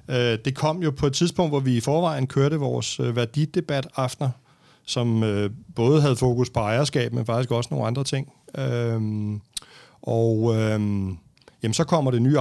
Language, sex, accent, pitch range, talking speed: Danish, male, native, 115-140 Hz, 160 wpm